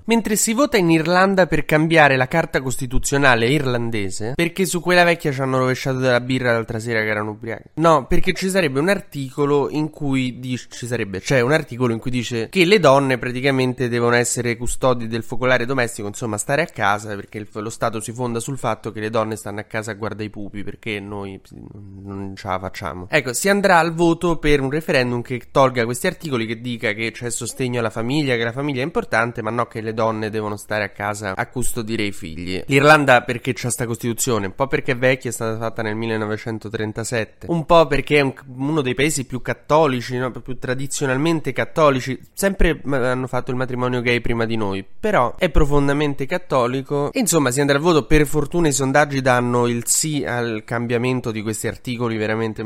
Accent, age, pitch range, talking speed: native, 20-39, 110-140 Hz, 200 wpm